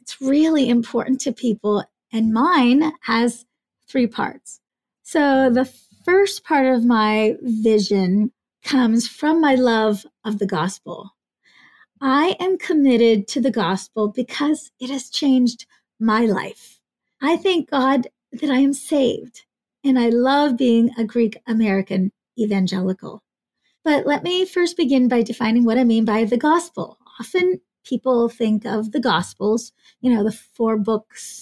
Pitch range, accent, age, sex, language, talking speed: 220-280 Hz, American, 30-49, female, English, 140 wpm